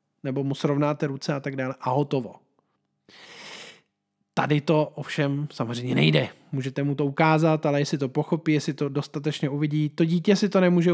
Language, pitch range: Czech, 140-175 Hz